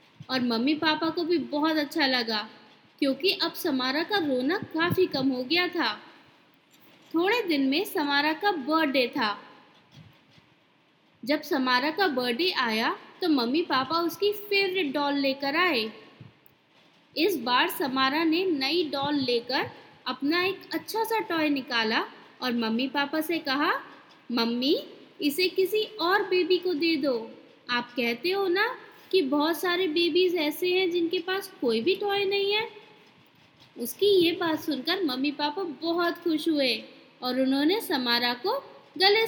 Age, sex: 20-39, female